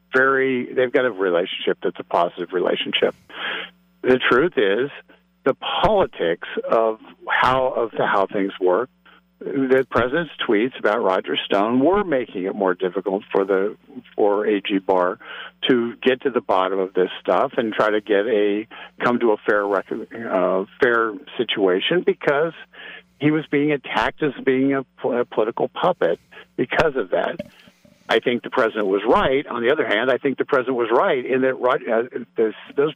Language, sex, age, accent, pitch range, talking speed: English, male, 50-69, American, 120-165 Hz, 165 wpm